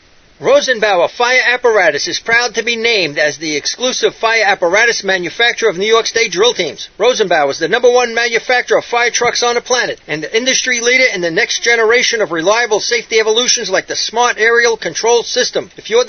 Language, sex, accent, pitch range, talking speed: English, male, American, 220-250 Hz, 195 wpm